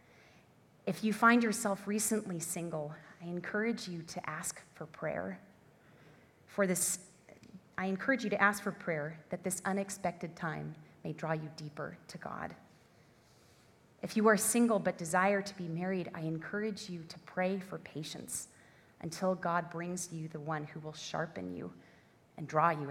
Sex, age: female, 30-49